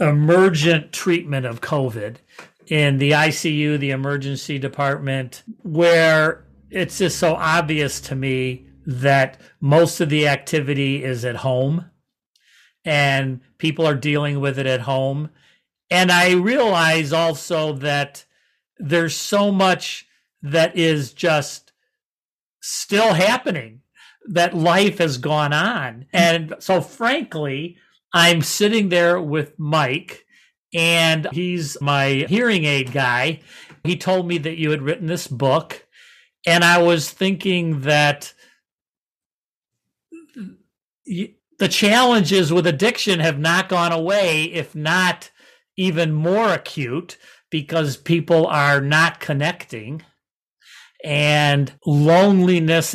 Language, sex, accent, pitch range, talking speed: English, male, American, 145-175 Hz, 110 wpm